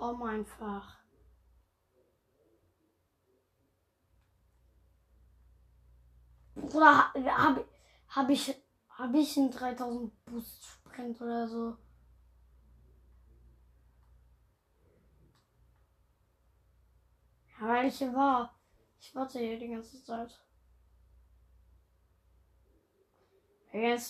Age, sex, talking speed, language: 20-39, female, 60 wpm, German